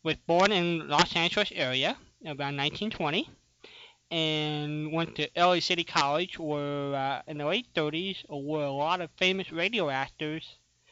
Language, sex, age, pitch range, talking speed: English, male, 20-39, 145-175 Hz, 150 wpm